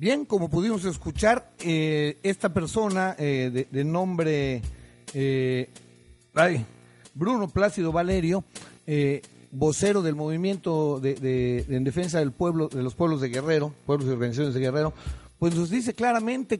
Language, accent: Spanish, Mexican